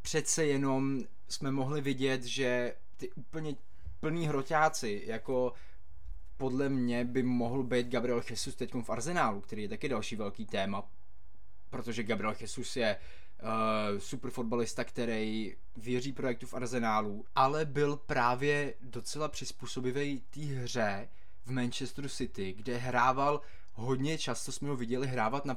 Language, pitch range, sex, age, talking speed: Czech, 110-135 Hz, male, 20-39, 135 wpm